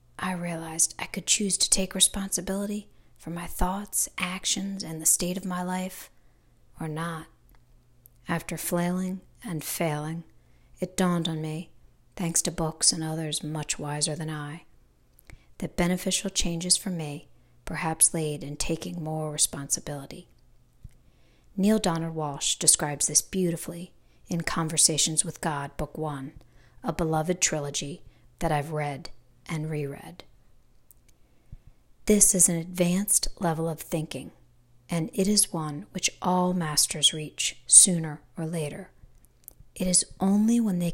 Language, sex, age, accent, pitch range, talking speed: English, female, 40-59, American, 150-180 Hz, 135 wpm